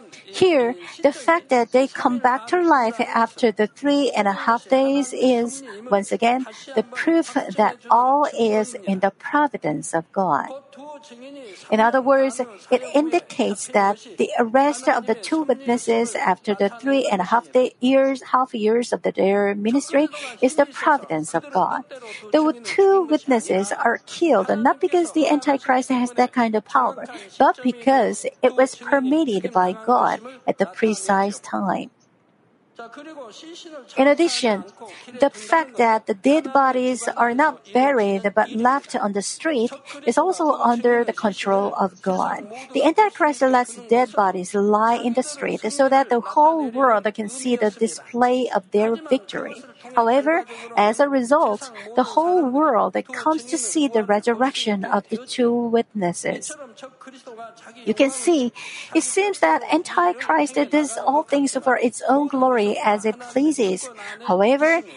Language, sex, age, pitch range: Korean, female, 50-69, 220-285 Hz